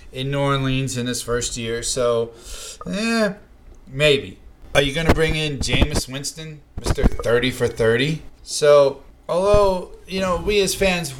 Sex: male